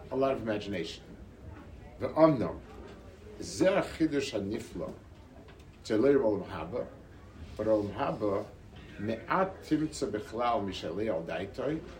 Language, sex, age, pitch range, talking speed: English, male, 60-79, 95-130 Hz, 110 wpm